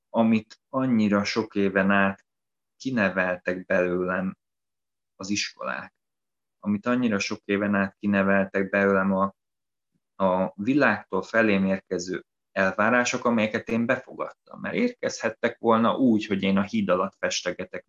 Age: 20-39